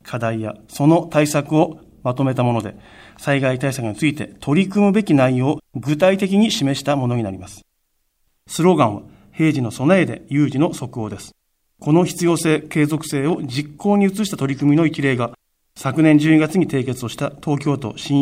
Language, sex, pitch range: Japanese, male, 125-165 Hz